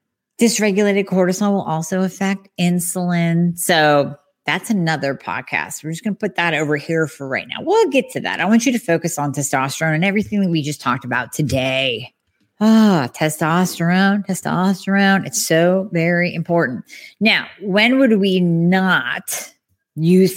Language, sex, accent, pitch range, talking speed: English, female, American, 155-195 Hz, 155 wpm